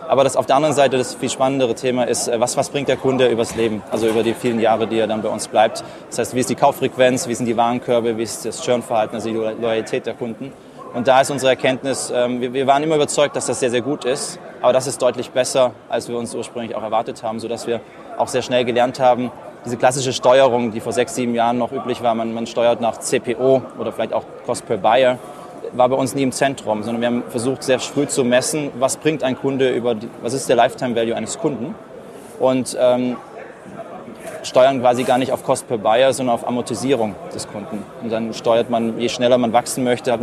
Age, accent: 20-39, German